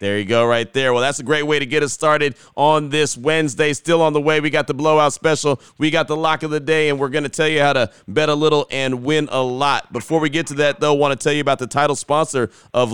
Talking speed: 290 wpm